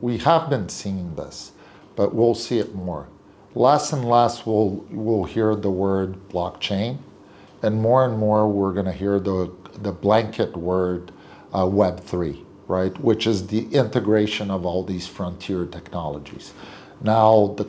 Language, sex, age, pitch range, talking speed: English, male, 50-69, 90-110 Hz, 150 wpm